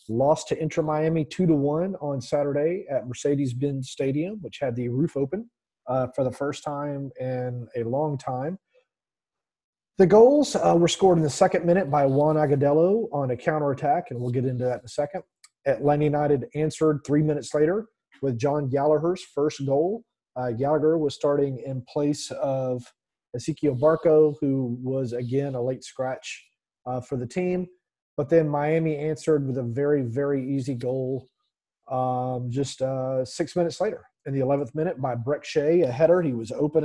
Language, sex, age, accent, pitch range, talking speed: English, male, 30-49, American, 130-155 Hz, 170 wpm